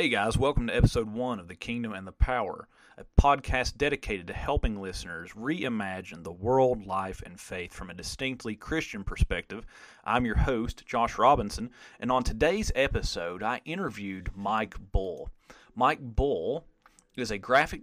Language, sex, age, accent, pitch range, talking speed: English, male, 30-49, American, 100-130 Hz, 160 wpm